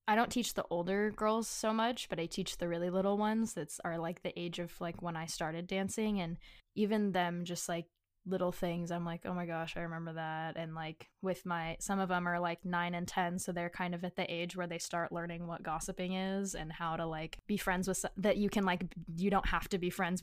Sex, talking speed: female, 250 wpm